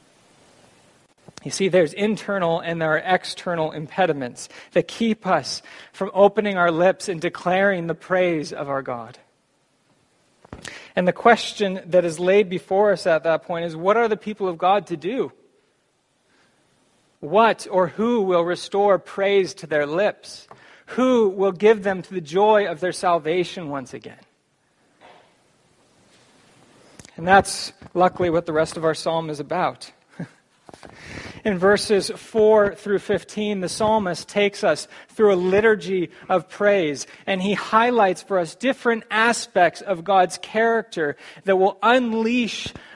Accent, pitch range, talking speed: American, 165-205 Hz, 140 wpm